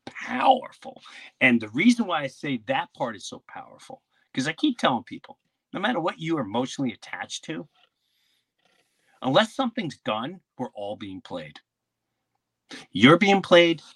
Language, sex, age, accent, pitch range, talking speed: English, male, 40-59, American, 120-155 Hz, 150 wpm